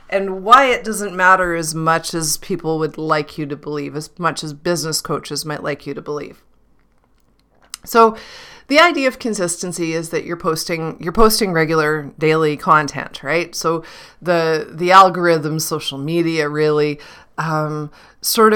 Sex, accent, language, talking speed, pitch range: female, American, English, 155 wpm, 155-190 Hz